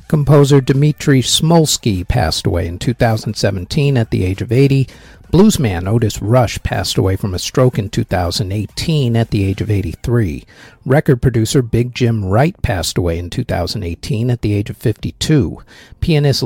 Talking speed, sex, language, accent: 155 wpm, male, English, American